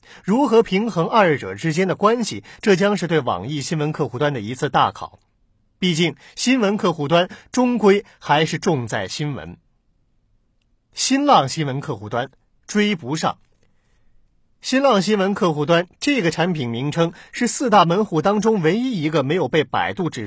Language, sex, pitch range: Chinese, male, 145-210 Hz